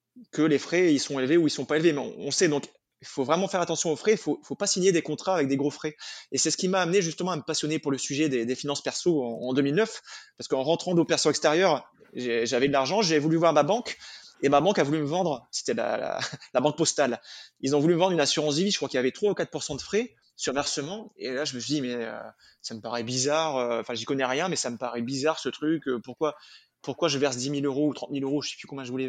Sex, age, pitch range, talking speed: male, 20-39, 140-170 Hz, 300 wpm